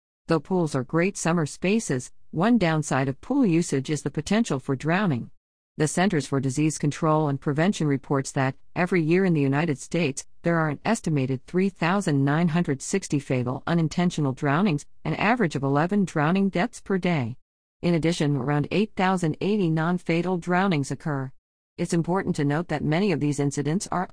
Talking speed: 160 wpm